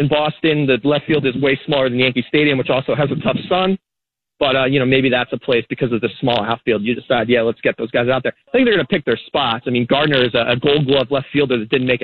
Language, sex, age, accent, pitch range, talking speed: English, male, 30-49, American, 115-145 Hz, 300 wpm